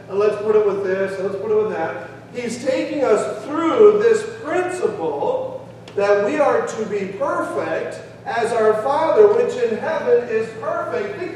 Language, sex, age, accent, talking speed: English, male, 40-59, American, 170 wpm